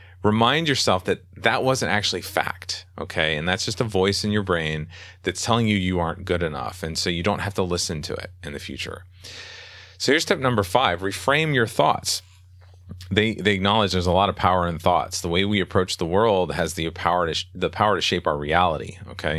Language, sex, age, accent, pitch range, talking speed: English, male, 30-49, American, 85-105 Hz, 220 wpm